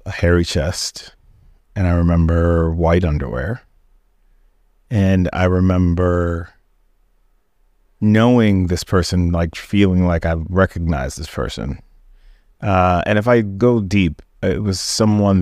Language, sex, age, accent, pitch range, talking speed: English, male, 30-49, American, 85-100 Hz, 115 wpm